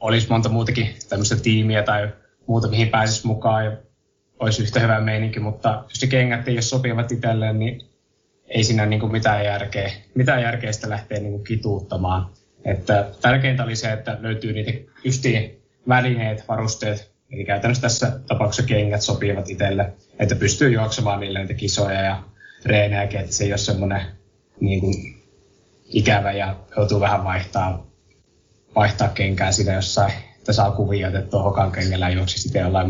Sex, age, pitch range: male, 20-39, 100-115 Hz